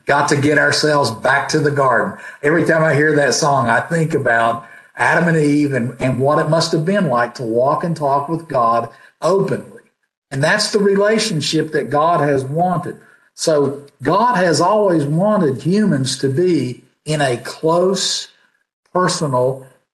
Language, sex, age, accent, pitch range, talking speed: English, male, 50-69, American, 135-175 Hz, 165 wpm